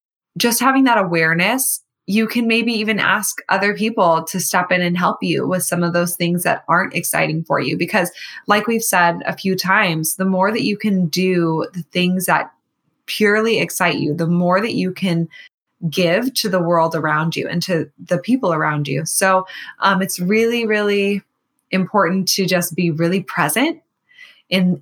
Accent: American